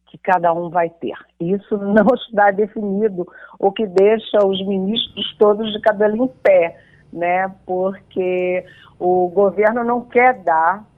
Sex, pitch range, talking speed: female, 155-210 Hz, 140 wpm